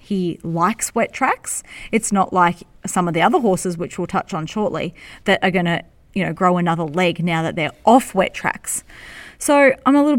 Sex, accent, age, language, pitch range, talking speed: female, Australian, 30-49, English, 180-215 Hz, 210 wpm